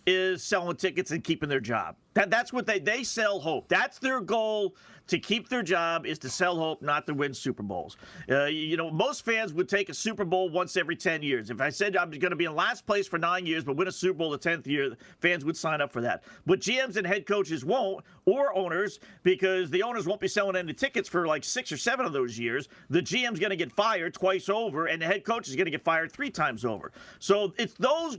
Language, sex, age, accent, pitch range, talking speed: English, male, 40-59, American, 170-235 Hz, 250 wpm